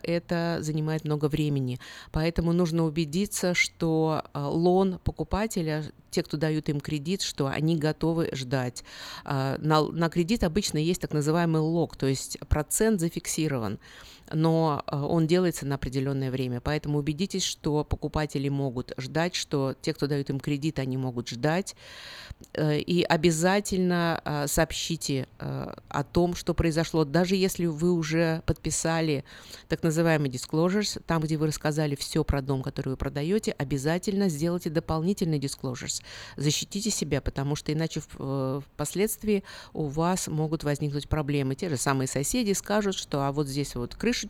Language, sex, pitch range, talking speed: Russian, female, 140-175 Hz, 140 wpm